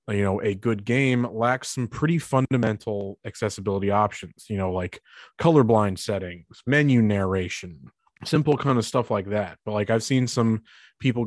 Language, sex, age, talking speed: English, male, 30-49, 160 wpm